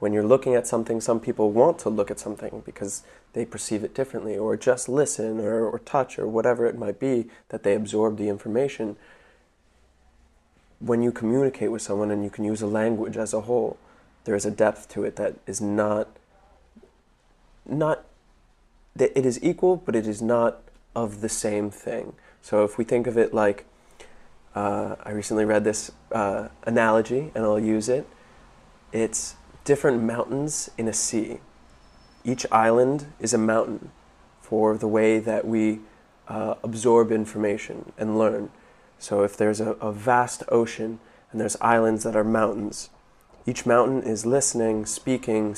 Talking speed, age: 165 wpm, 20-39